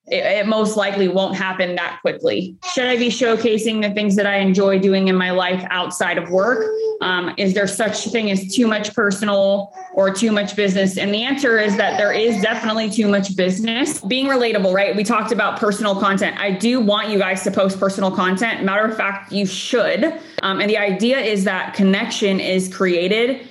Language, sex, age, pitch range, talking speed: English, female, 20-39, 185-215 Hz, 200 wpm